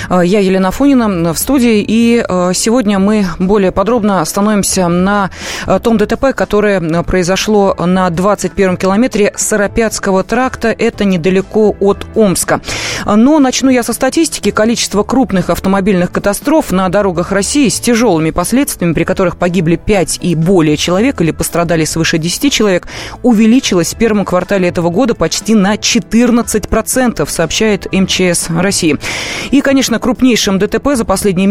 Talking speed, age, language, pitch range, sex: 135 wpm, 20-39, Russian, 180-225 Hz, female